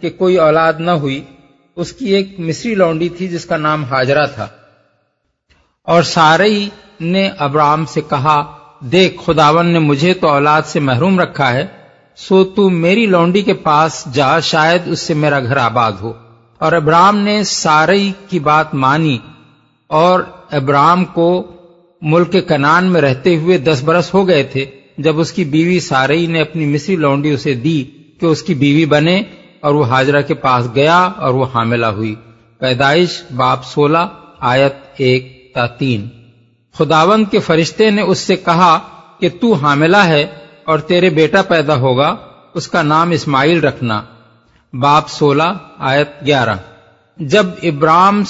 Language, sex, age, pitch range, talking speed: Urdu, male, 50-69, 140-180 Hz, 155 wpm